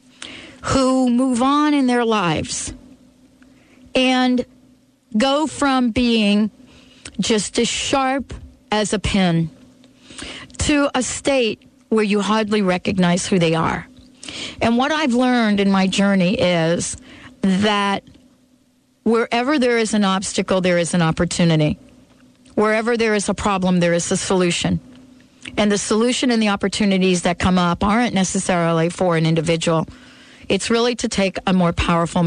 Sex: female